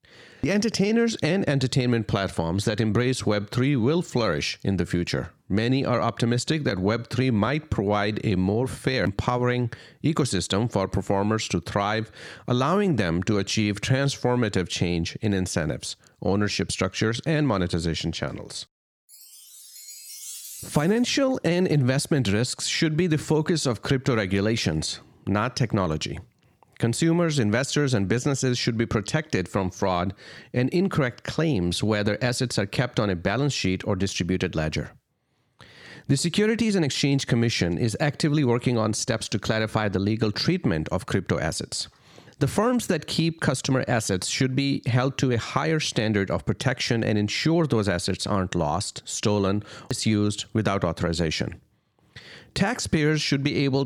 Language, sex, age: English, male, 40-59